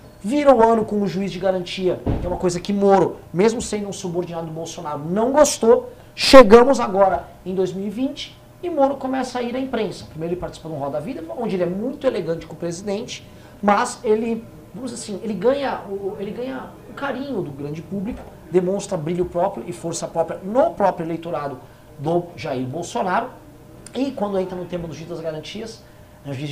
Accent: Brazilian